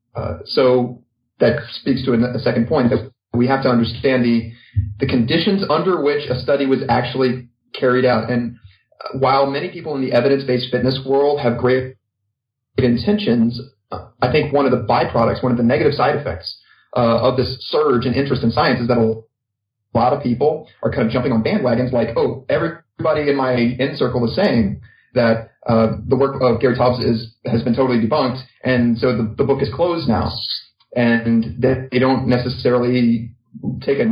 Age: 30-49